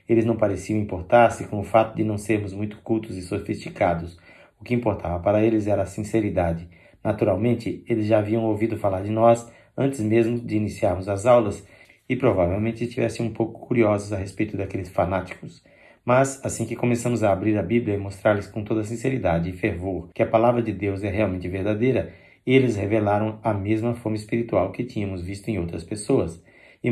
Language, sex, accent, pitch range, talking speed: Portuguese, male, Brazilian, 95-115 Hz, 185 wpm